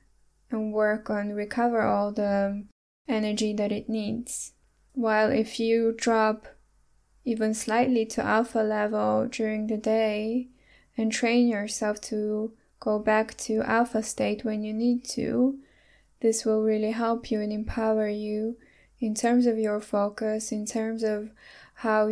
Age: 10-29